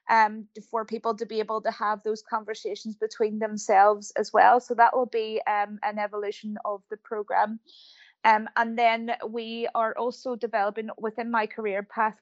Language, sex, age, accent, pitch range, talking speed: English, female, 20-39, British, 205-230 Hz, 170 wpm